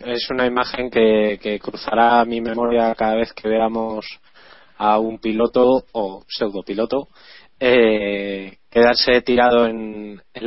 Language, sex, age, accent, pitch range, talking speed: Spanish, male, 20-39, Spanish, 110-125 Hz, 125 wpm